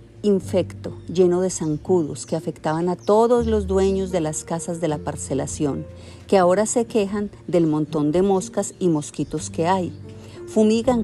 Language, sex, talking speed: Spanish, female, 160 wpm